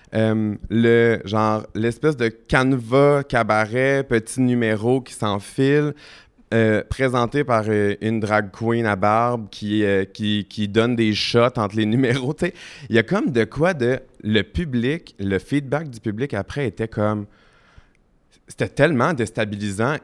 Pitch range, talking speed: 100-120 Hz, 145 wpm